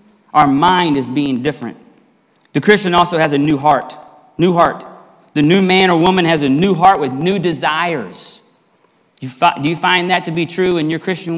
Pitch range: 150-190 Hz